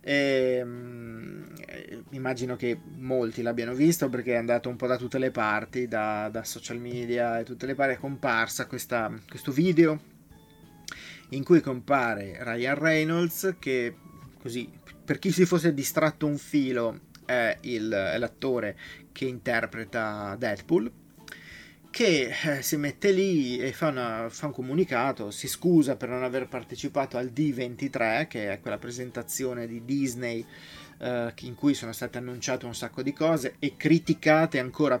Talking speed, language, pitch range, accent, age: 150 wpm, Italian, 120-145 Hz, native, 30-49